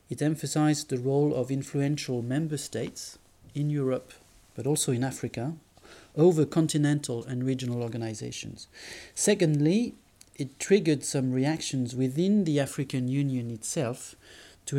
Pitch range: 120-150 Hz